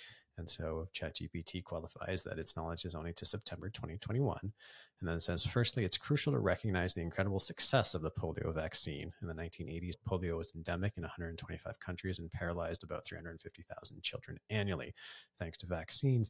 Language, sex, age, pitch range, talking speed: English, male, 30-49, 85-105 Hz, 170 wpm